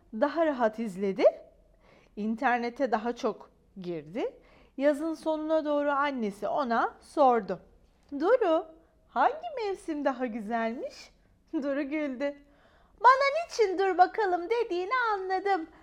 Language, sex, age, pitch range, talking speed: Turkish, female, 40-59, 230-330 Hz, 100 wpm